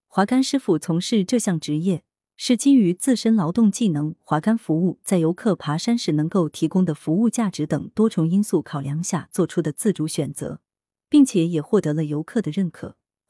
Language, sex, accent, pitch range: Chinese, female, native, 155-220 Hz